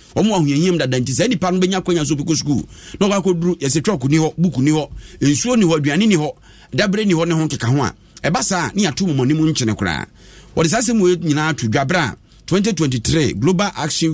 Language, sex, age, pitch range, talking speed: English, male, 50-69, 120-175 Hz, 185 wpm